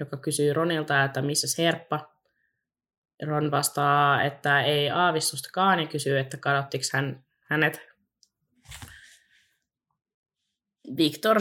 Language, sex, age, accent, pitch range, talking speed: Finnish, female, 20-39, native, 145-175 Hz, 95 wpm